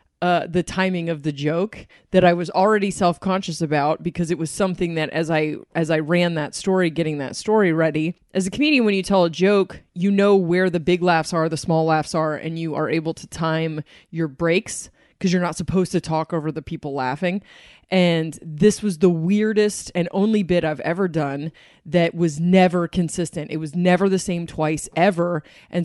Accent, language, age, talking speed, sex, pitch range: American, English, 20-39, 200 wpm, female, 160-190 Hz